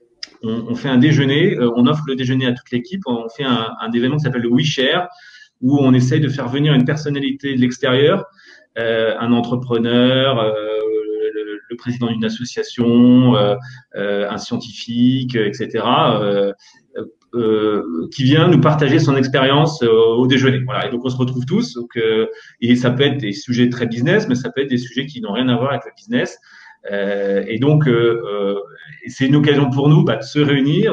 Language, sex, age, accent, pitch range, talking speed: French, male, 30-49, French, 120-145 Hz, 195 wpm